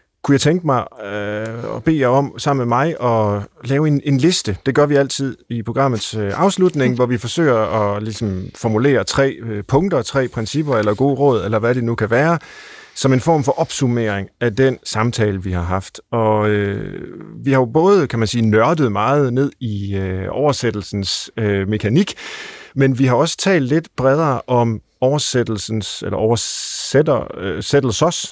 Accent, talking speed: native, 175 wpm